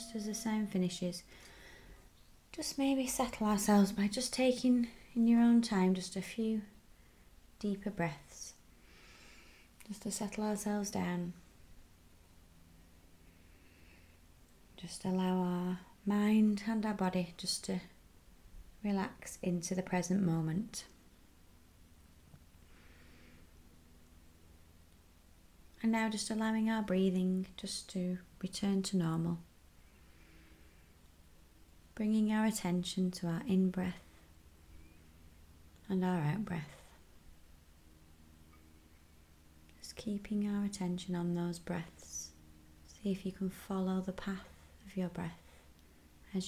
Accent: British